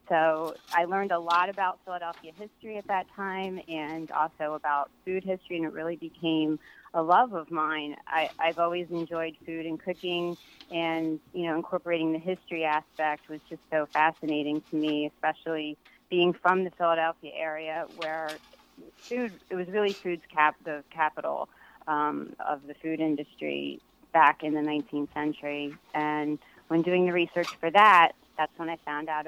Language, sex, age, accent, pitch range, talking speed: English, female, 30-49, American, 150-175 Hz, 160 wpm